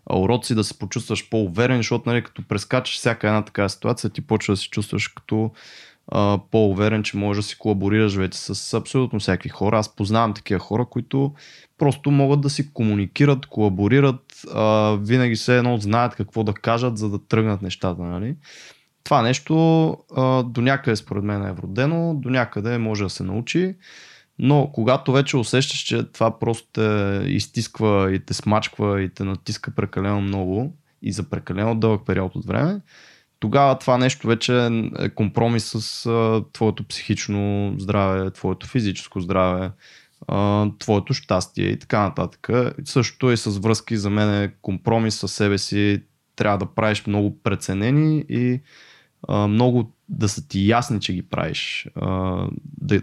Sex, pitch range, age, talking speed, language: male, 100-125 Hz, 20-39, 155 wpm, Bulgarian